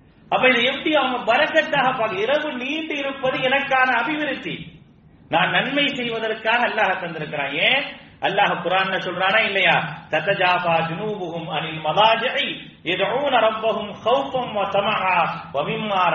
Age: 40-59